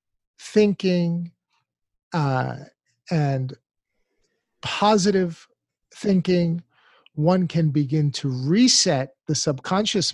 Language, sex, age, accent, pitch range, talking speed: English, male, 50-69, American, 135-175 Hz, 70 wpm